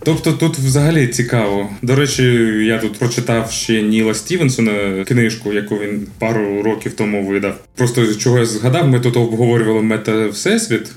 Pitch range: 105-125 Hz